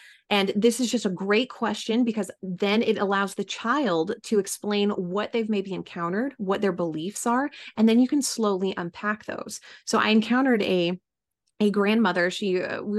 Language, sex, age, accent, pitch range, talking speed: English, female, 30-49, American, 190-225 Hz, 180 wpm